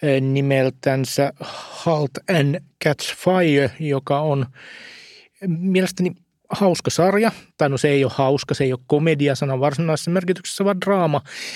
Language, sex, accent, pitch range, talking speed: Finnish, male, native, 135-155 Hz, 125 wpm